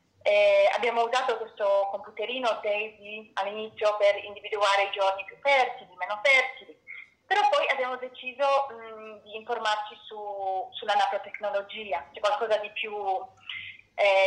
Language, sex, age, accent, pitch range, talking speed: Italian, female, 30-49, native, 205-250 Hz, 125 wpm